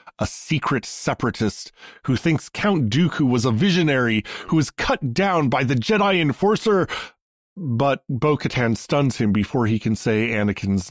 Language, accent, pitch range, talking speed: English, American, 105-140 Hz, 150 wpm